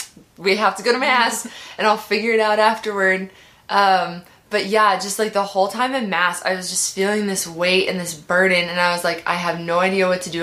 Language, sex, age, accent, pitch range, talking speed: English, female, 20-39, American, 175-210 Hz, 240 wpm